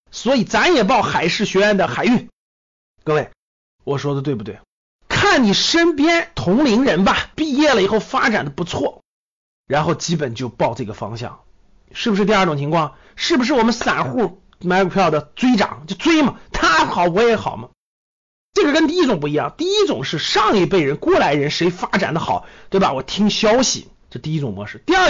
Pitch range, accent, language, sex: 160-260 Hz, native, Chinese, male